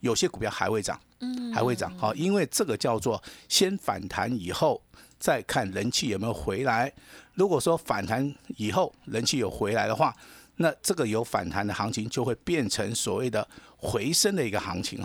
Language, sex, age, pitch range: Chinese, male, 50-69, 110-155 Hz